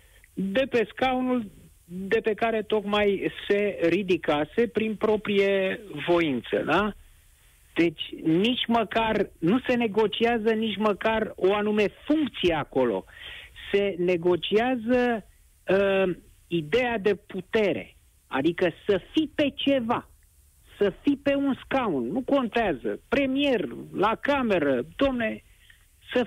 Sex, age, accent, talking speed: male, 50-69, native, 110 wpm